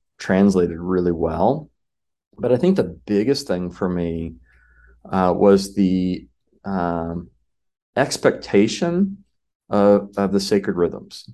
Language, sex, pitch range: English, male, 85-100 Hz